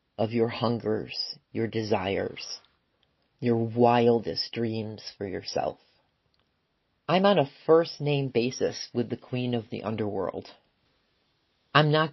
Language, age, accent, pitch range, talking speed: English, 40-59, American, 115-130 Hz, 115 wpm